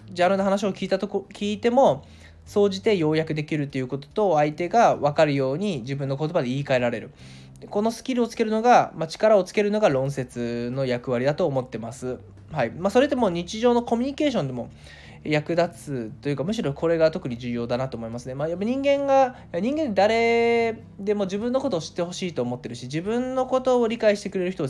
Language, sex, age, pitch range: Japanese, male, 20-39, 130-210 Hz